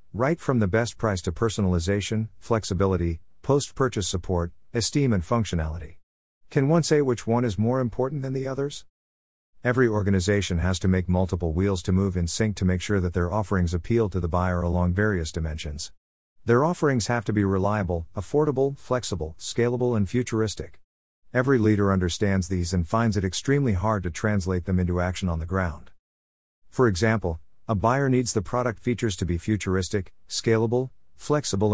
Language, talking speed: English, 170 wpm